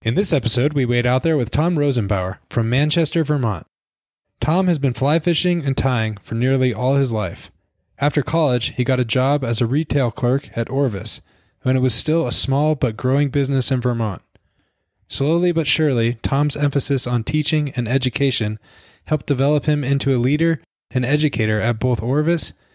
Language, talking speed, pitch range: English, 180 wpm, 120-145 Hz